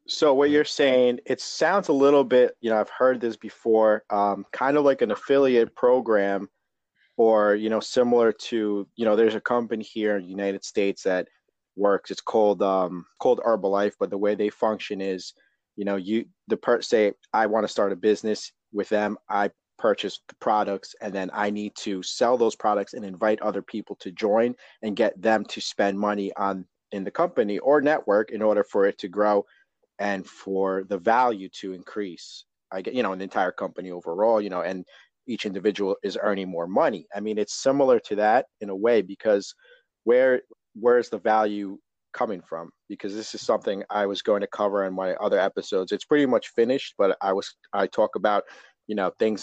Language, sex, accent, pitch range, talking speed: English, male, American, 100-125 Hz, 200 wpm